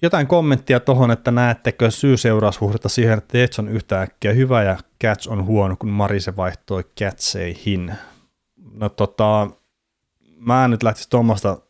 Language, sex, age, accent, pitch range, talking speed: Finnish, male, 30-49, native, 95-110 Hz, 140 wpm